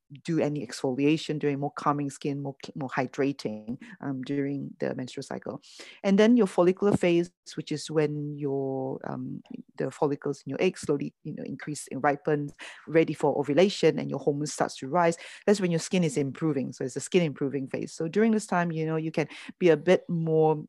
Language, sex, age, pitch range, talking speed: English, female, 30-49, 140-175 Hz, 200 wpm